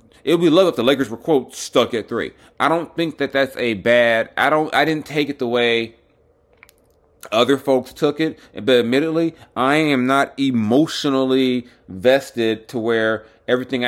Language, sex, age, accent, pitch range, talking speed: English, male, 30-49, American, 95-130 Hz, 175 wpm